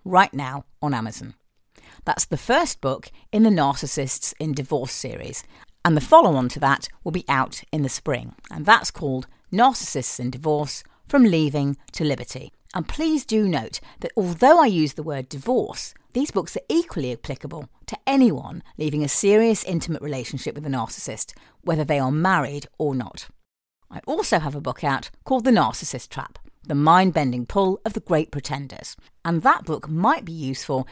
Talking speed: 175 wpm